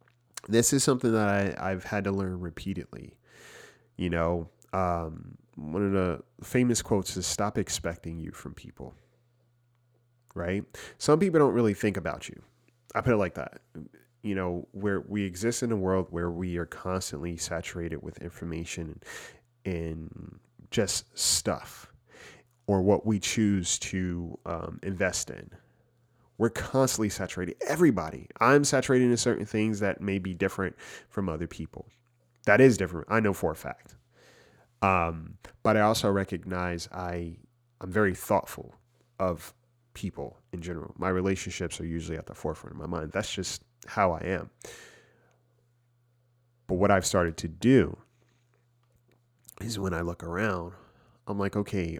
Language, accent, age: English, American, 30-49